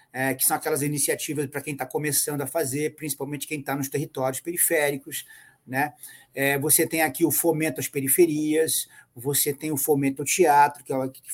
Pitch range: 140-200 Hz